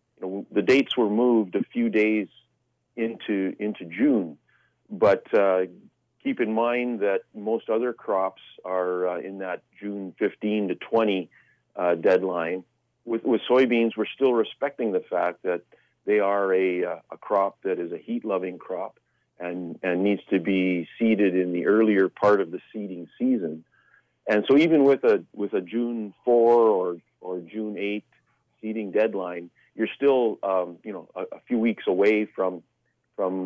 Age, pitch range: 40-59, 95-115 Hz